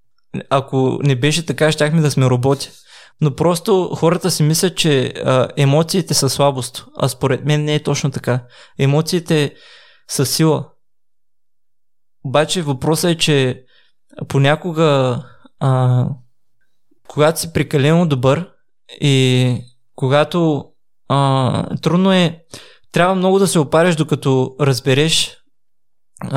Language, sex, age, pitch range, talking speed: Bulgarian, male, 20-39, 135-160 Hz, 115 wpm